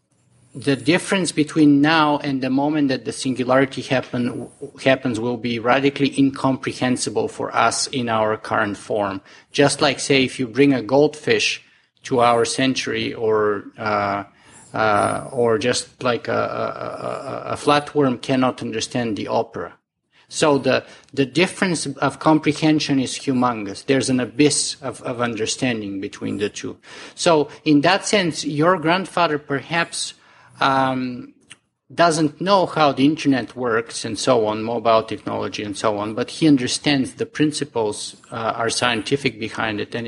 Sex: male